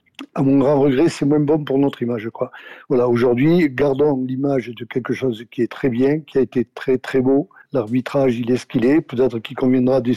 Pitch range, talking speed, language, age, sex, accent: 125-145 Hz, 230 wpm, French, 60-79, male, French